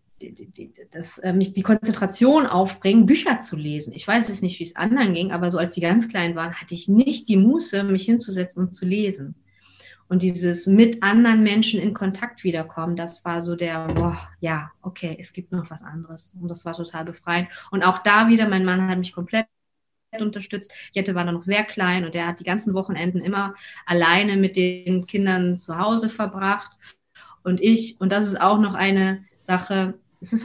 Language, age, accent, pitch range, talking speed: German, 20-39, German, 175-210 Hz, 205 wpm